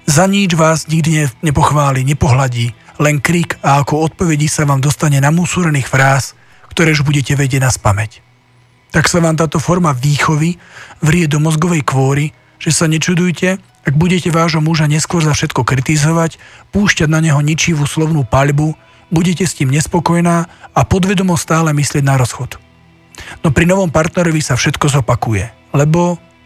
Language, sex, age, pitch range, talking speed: Slovak, male, 40-59, 135-170 Hz, 155 wpm